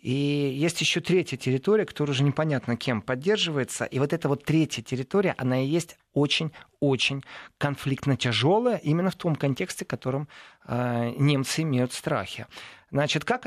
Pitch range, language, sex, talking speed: 130-170 Hz, Russian, male, 145 wpm